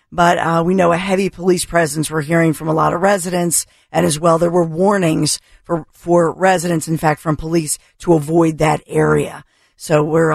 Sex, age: female, 50-69